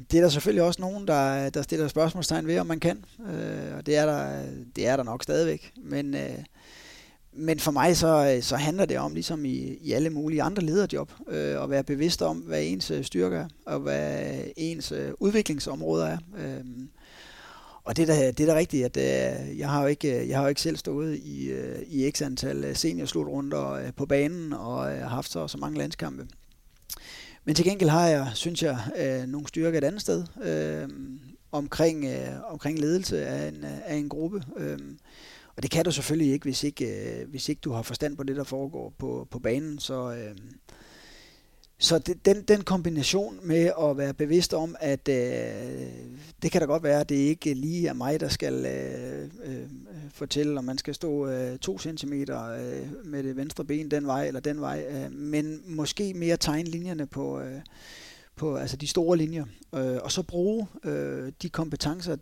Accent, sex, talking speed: native, male, 175 wpm